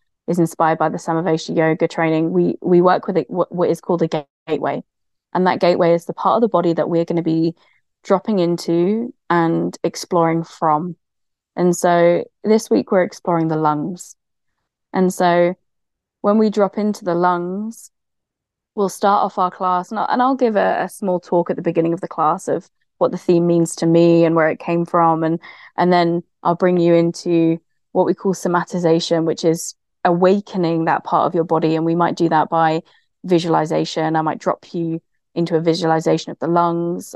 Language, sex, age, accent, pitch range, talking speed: English, female, 20-39, British, 165-180 Hz, 195 wpm